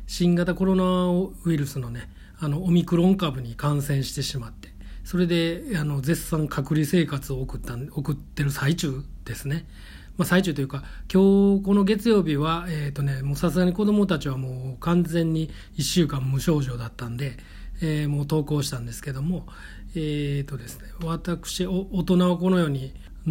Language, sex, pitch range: Japanese, male, 135-175 Hz